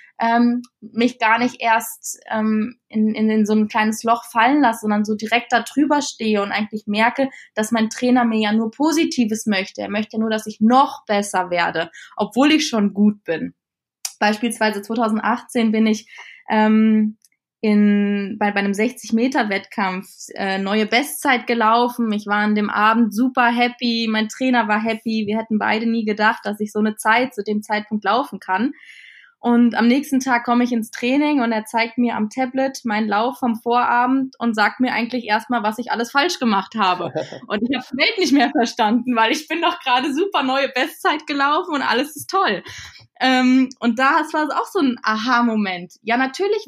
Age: 20-39